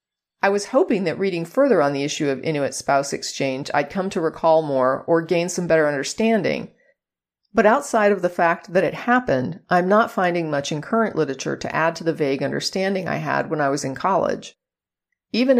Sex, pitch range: female, 155-205 Hz